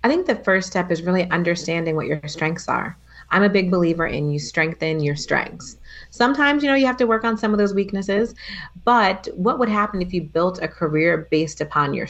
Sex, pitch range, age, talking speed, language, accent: female, 150-205 Hz, 30-49, 225 wpm, English, American